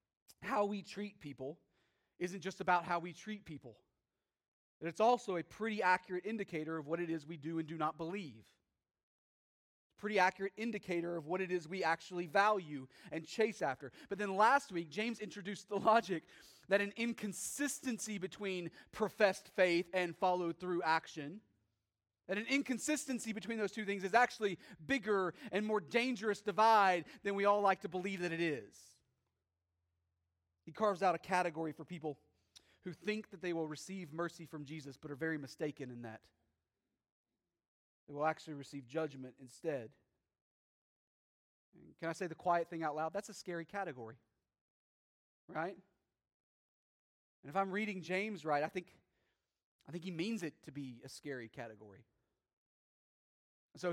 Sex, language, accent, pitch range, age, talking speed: male, English, American, 150-200 Hz, 30-49, 155 wpm